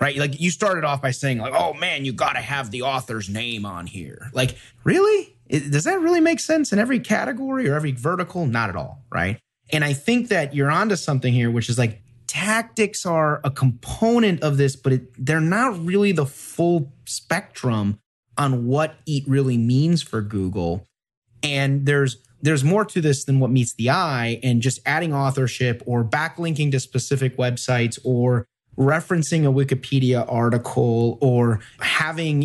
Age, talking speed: 30-49, 175 wpm